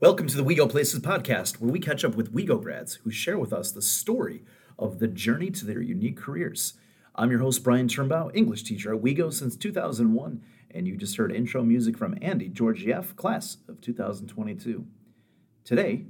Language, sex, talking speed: English, male, 185 wpm